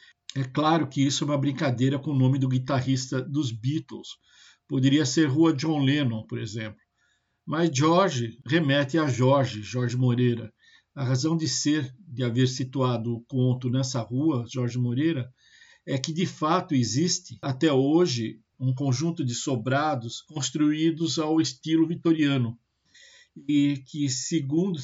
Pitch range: 125-150 Hz